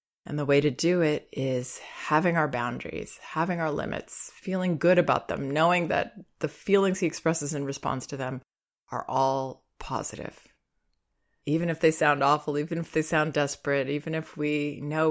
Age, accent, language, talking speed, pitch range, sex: 30-49, American, English, 175 wpm, 140-175 Hz, female